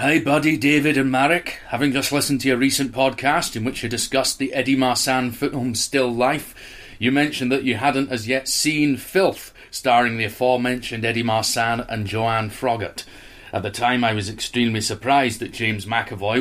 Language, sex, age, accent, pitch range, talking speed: English, male, 30-49, British, 105-130 Hz, 180 wpm